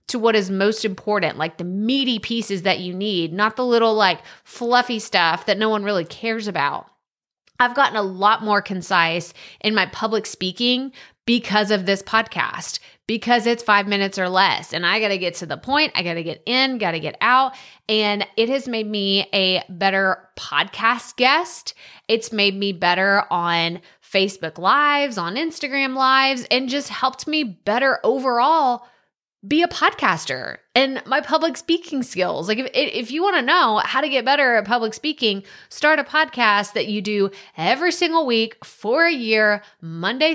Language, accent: English, American